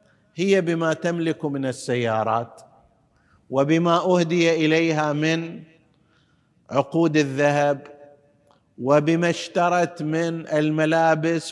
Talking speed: 80 wpm